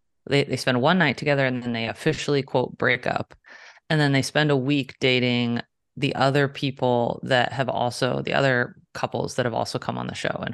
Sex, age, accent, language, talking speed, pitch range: female, 30-49, American, English, 210 wpm, 120-140 Hz